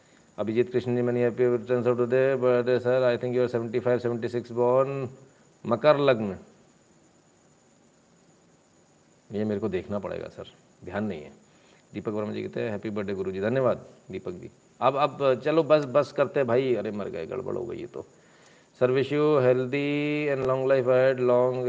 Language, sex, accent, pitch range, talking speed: Hindi, male, native, 110-130 Hz, 155 wpm